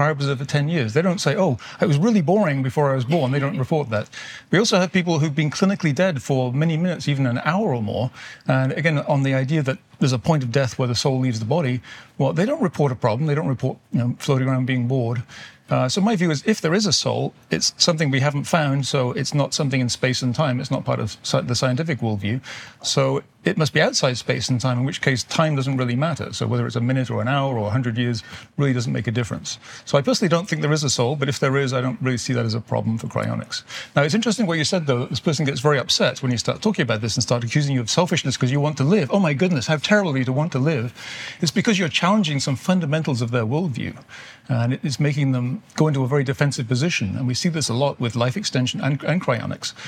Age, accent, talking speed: 40-59, British, 265 wpm